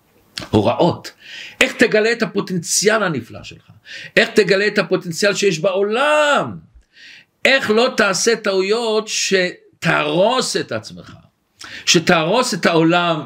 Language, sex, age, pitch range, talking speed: Hebrew, male, 50-69, 135-210 Hz, 105 wpm